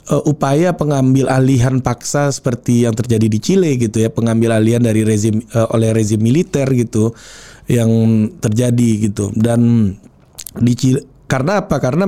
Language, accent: Indonesian, native